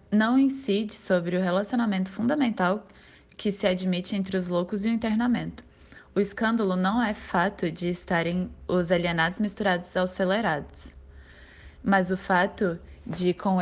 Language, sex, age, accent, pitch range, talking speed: Portuguese, female, 10-29, Brazilian, 170-205 Hz, 140 wpm